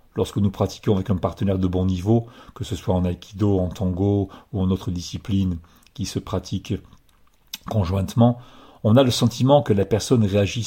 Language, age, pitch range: English, 40-59, 95-110 Hz